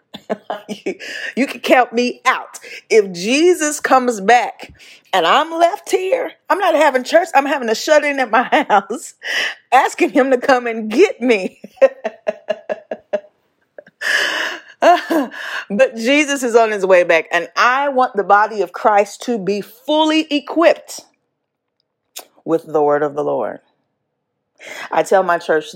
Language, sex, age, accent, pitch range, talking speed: English, female, 30-49, American, 185-300 Hz, 140 wpm